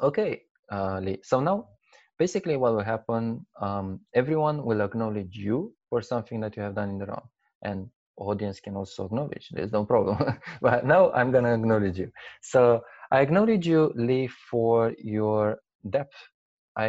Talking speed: 165 wpm